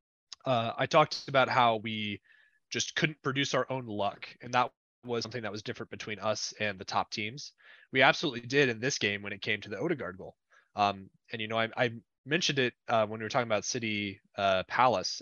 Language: English